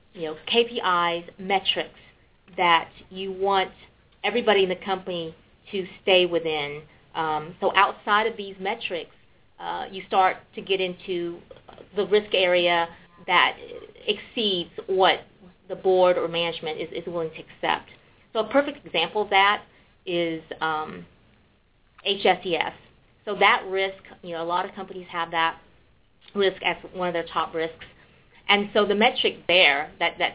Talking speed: 150 wpm